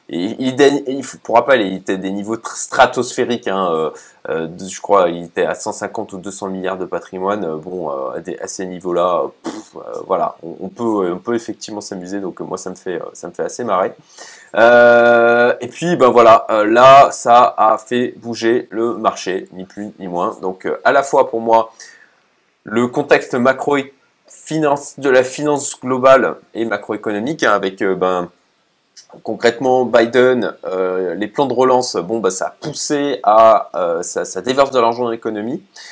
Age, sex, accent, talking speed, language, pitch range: 20-39, male, French, 165 wpm, French, 100-130 Hz